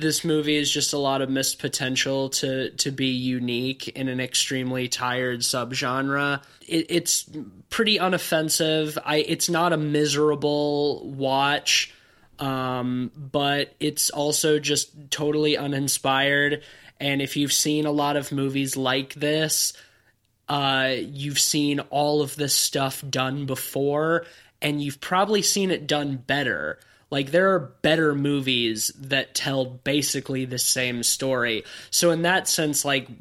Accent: American